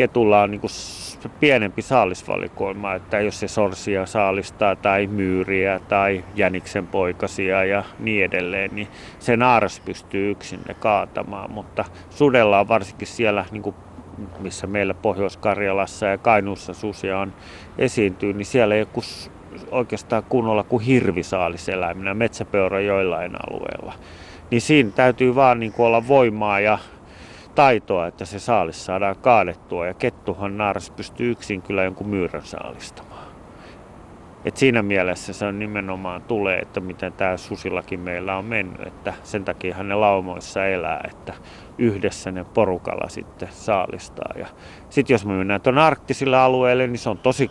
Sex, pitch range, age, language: male, 95-105 Hz, 30-49, Finnish